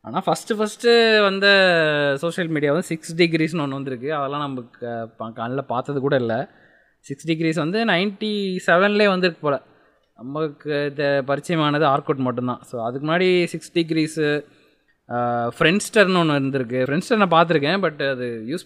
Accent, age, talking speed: native, 20-39, 145 wpm